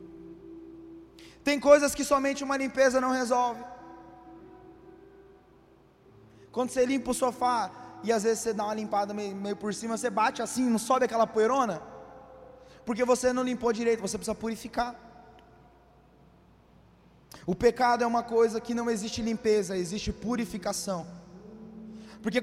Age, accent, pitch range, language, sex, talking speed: 20-39, Brazilian, 215-250 Hz, Portuguese, male, 135 wpm